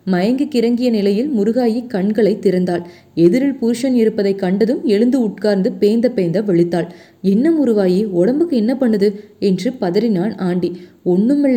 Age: 20-39